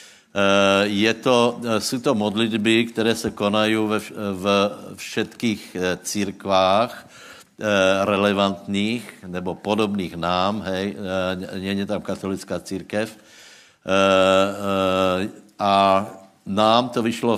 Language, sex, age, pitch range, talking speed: Slovak, male, 60-79, 95-110 Hz, 90 wpm